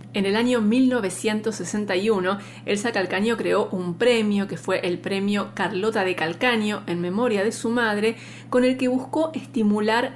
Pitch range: 185-225 Hz